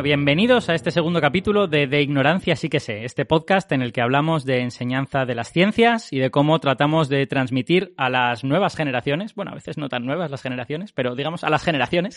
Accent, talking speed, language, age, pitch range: Spanish, 220 wpm, Spanish, 20-39, 130-170 Hz